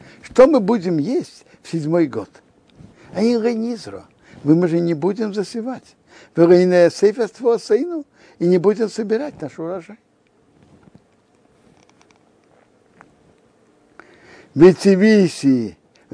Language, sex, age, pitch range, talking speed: Russian, male, 60-79, 150-210 Hz, 85 wpm